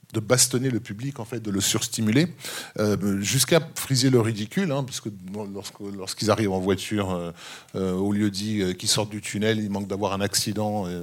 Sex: male